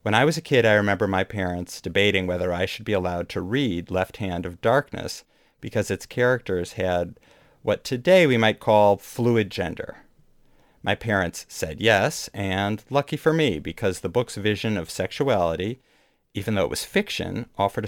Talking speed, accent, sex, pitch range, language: 175 wpm, American, male, 90-115 Hz, English